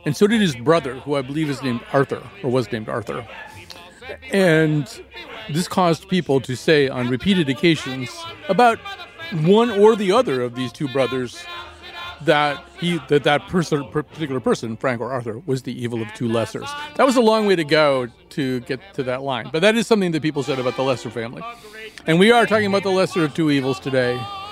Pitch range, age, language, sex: 130-190 Hz, 40-59, English, male